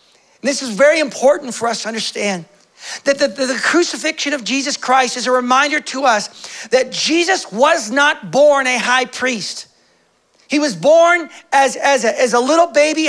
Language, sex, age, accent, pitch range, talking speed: English, male, 40-59, American, 255-300 Hz, 180 wpm